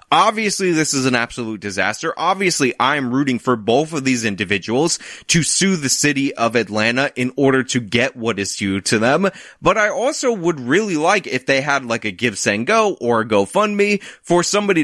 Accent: American